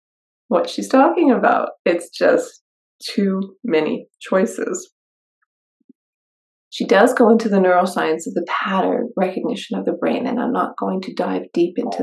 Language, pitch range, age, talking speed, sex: English, 170-240 Hz, 30-49, 150 wpm, female